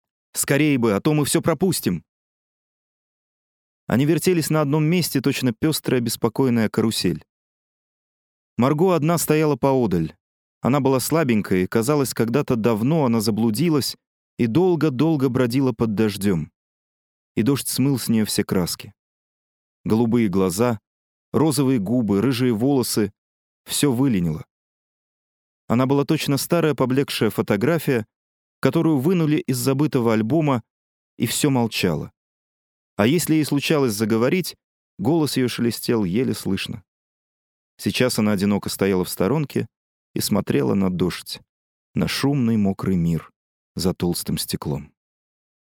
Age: 30-49